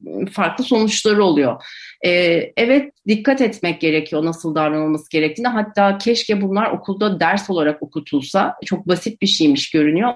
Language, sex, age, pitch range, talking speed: Turkish, female, 40-59, 165-220 Hz, 130 wpm